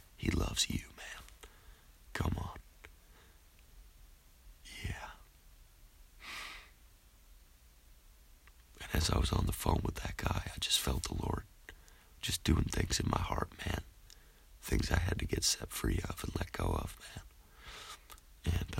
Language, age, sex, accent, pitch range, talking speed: English, 30-49, male, American, 75-100 Hz, 135 wpm